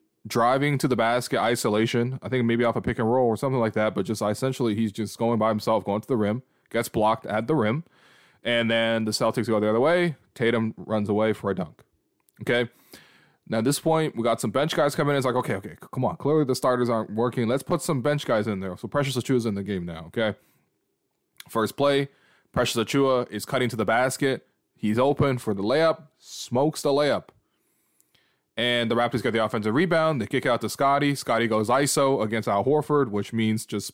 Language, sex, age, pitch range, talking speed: English, male, 20-39, 110-140 Hz, 220 wpm